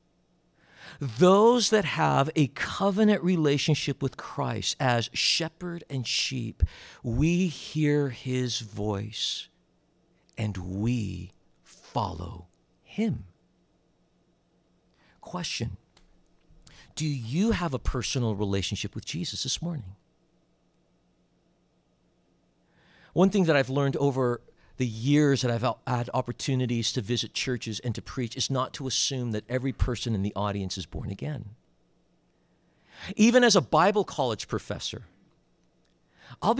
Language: English